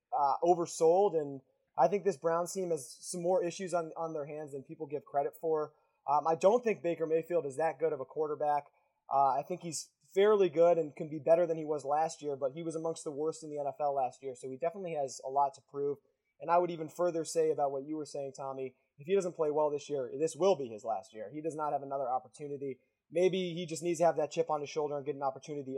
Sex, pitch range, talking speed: male, 145-175 Hz, 265 wpm